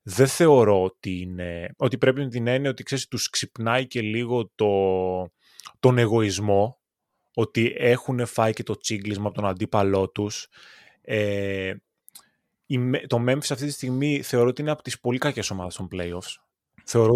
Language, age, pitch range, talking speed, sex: Greek, 20-39, 105-130 Hz, 155 wpm, male